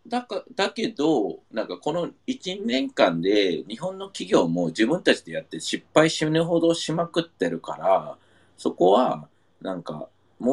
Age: 40-59